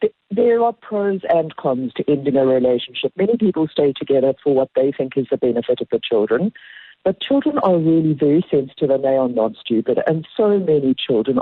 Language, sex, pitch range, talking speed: English, female, 135-190 Hz, 200 wpm